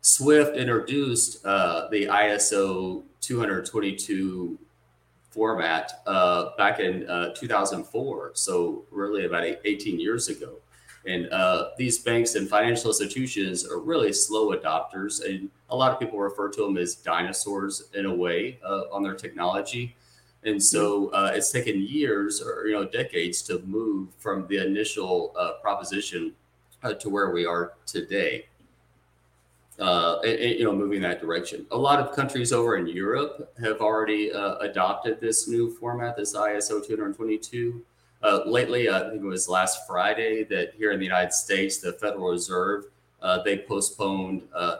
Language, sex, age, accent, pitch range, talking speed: English, male, 30-49, American, 95-130 Hz, 155 wpm